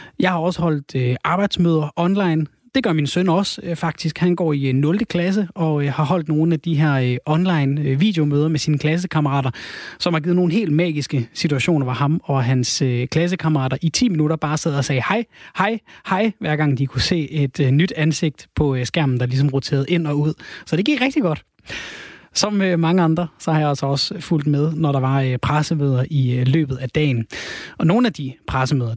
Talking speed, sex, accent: 200 wpm, male, native